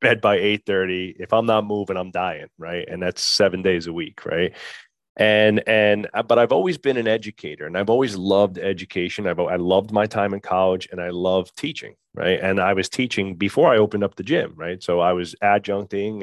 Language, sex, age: English, male, 30-49